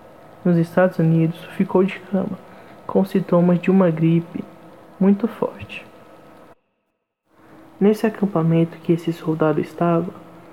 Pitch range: 165-185 Hz